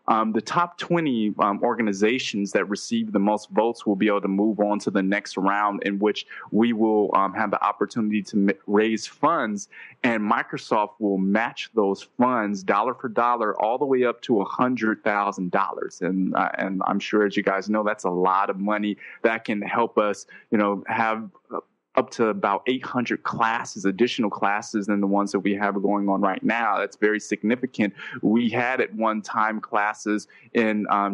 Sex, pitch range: male, 100-115 Hz